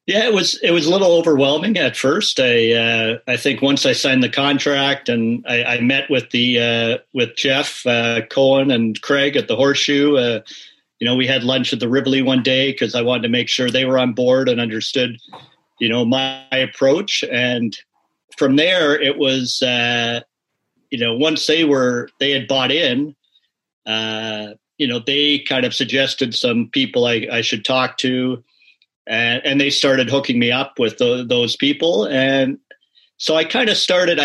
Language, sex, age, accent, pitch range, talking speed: English, male, 40-59, American, 120-140 Hz, 190 wpm